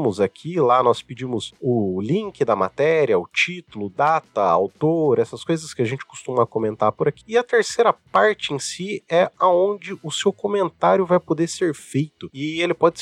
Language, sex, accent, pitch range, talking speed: Portuguese, male, Brazilian, 125-190 Hz, 180 wpm